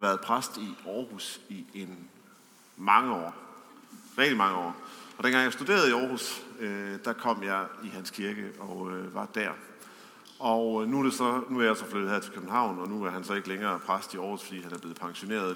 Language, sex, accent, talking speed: English, male, Danish, 210 wpm